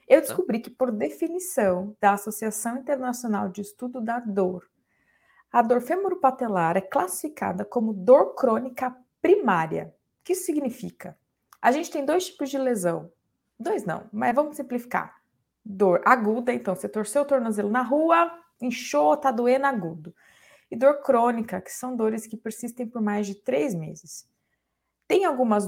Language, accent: Portuguese, Brazilian